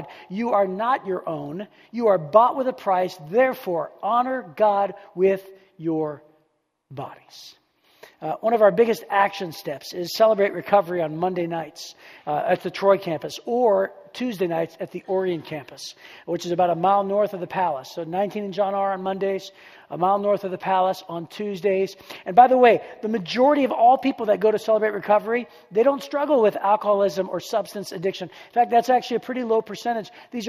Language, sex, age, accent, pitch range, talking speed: English, male, 40-59, American, 190-240 Hz, 190 wpm